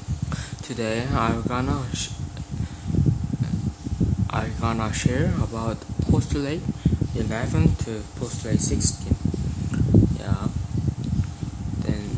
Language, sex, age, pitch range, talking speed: English, male, 20-39, 100-120 Hz, 65 wpm